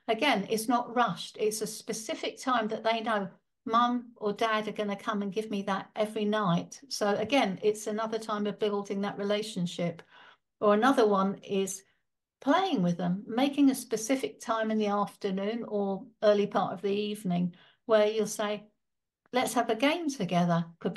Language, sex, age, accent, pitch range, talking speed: English, female, 60-79, British, 195-230 Hz, 175 wpm